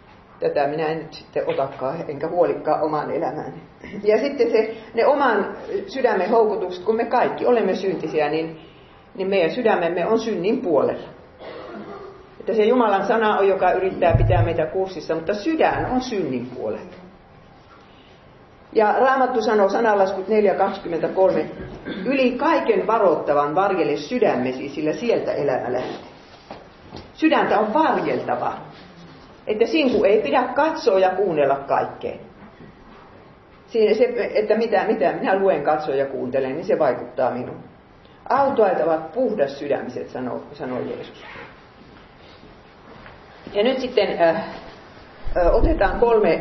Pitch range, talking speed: 170-230 Hz, 120 wpm